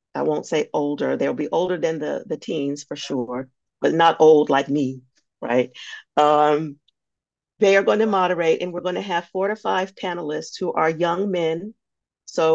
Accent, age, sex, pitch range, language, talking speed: American, 40-59, female, 145-175 Hz, English, 175 wpm